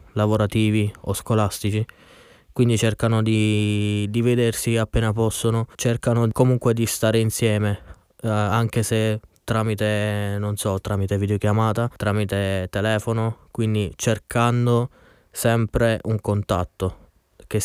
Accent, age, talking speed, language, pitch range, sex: native, 20-39, 105 wpm, Italian, 105-125 Hz, male